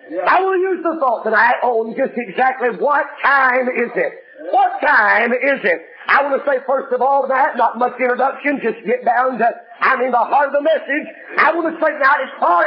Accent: American